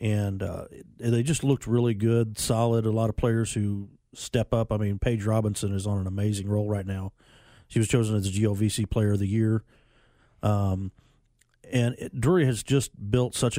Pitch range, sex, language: 105-120 Hz, male, English